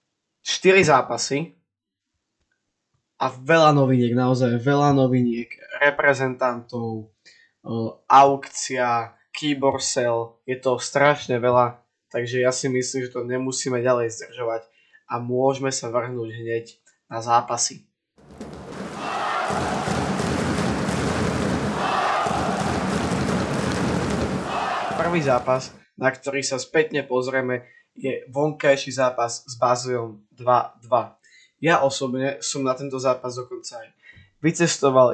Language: Slovak